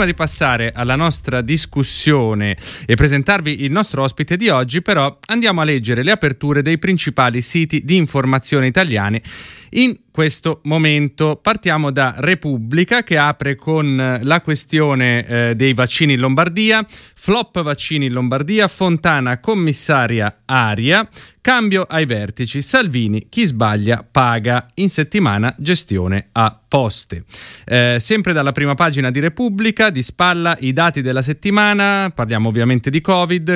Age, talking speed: 30-49, 135 wpm